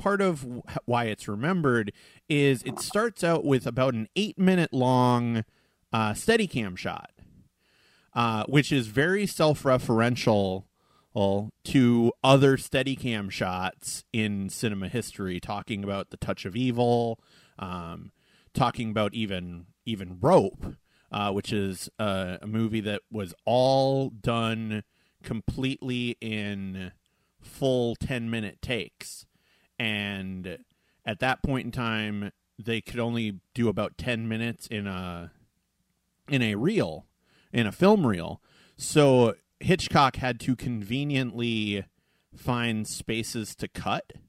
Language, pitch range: English, 105-130 Hz